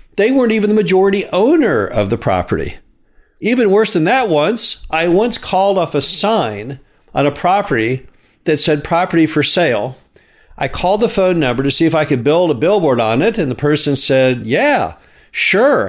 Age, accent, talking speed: 50-69, American, 185 wpm